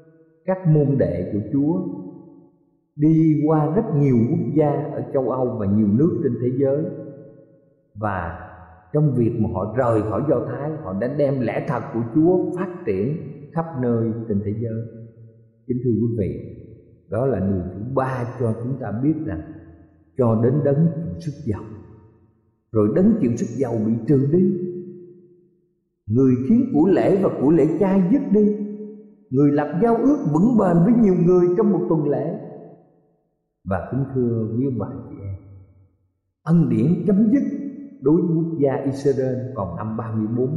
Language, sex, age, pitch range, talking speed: Vietnamese, male, 50-69, 115-175 Hz, 165 wpm